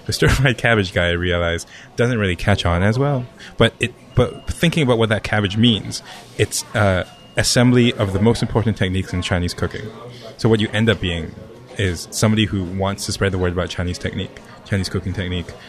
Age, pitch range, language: 20-39, 90-115 Hz, English